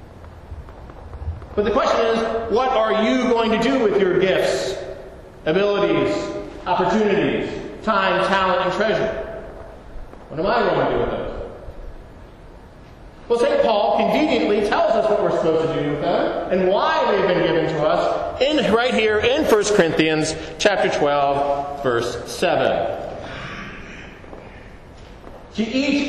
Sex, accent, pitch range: male, American, 170-235 Hz